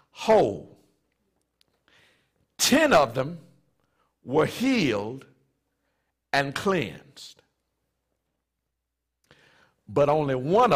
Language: English